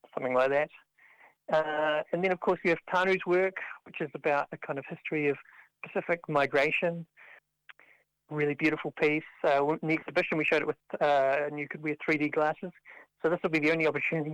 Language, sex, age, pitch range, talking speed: English, male, 40-59, 140-165 Hz, 195 wpm